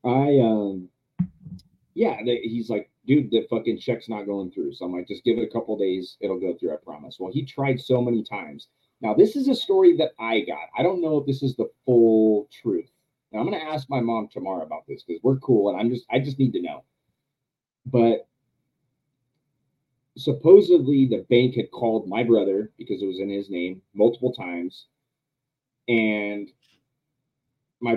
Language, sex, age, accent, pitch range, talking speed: English, male, 30-49, American, 105-135 Hz, 190 wpm